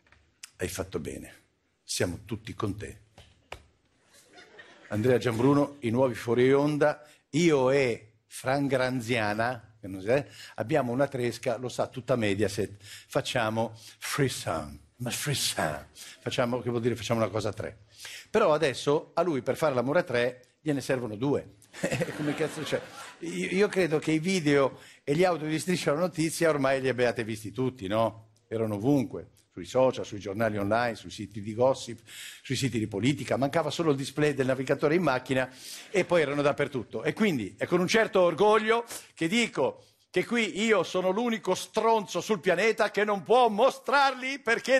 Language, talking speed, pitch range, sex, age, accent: Italian, 165 wpm, 115-180 Hz, male, 50-69, native